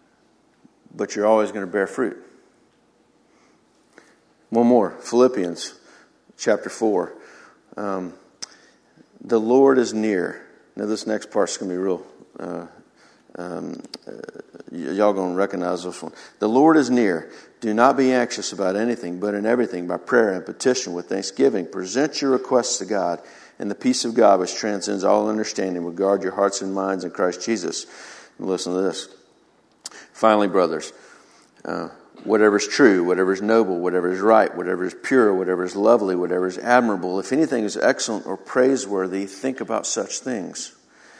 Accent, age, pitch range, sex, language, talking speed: American, 50-69, 95-115 Hz, male, English, 160 wpm